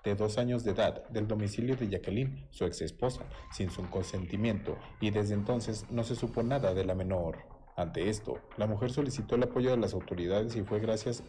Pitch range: 100-120 Hz